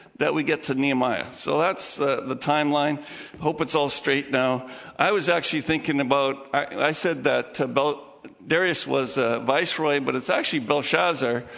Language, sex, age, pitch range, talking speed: English, male, 50-69, 120-150 Hz, 180 wpm